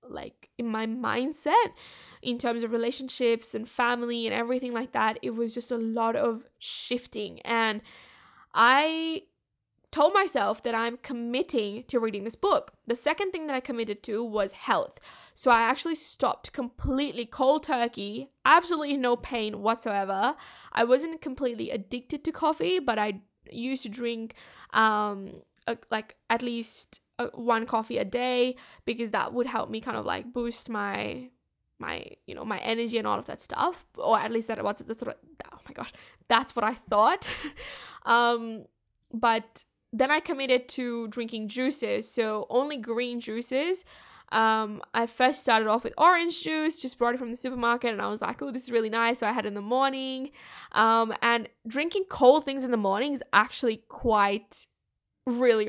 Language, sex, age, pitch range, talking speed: English, female, 10-29, 225-260 Hz, 170 wpm